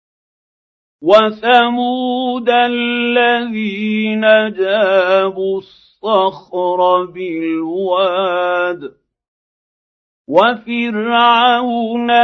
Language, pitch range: Arabic, 180-220 Hz